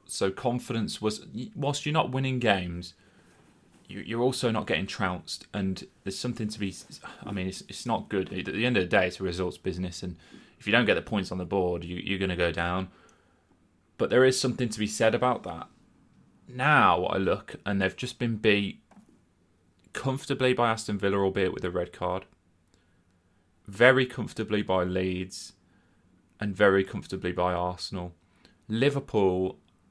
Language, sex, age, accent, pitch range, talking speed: English, male, 20-39, British, 90-110 Hz, 170 wpm